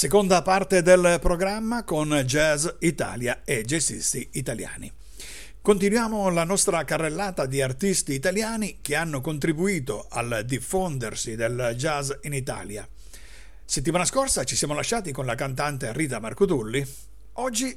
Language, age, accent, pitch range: Italian, 50-69, native, 135-190 Hz